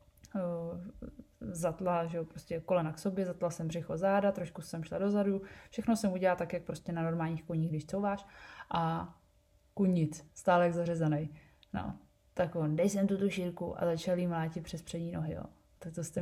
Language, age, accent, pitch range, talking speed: Czech, 20-39, native, 165-200 Hz, 180 wpm